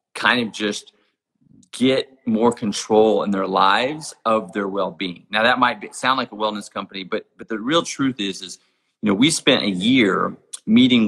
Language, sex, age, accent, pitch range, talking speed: English, male, 30-49, American, 100-125 Hz, 185 wpm